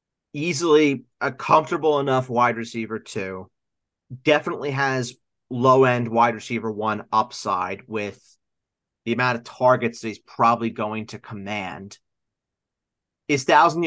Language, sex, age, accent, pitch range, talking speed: English, male, 30-49, American, 115-140 Hz, 115 wpm